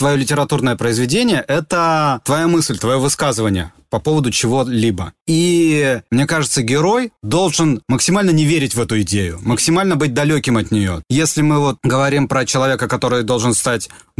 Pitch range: 115-160 Hz